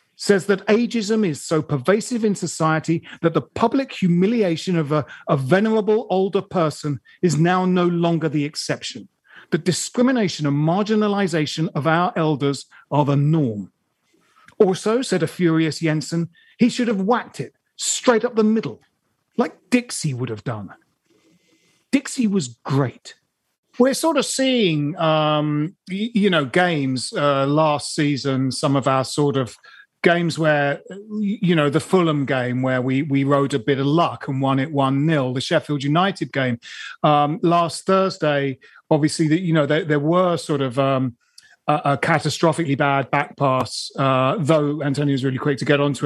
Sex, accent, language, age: male, British, English, 40-59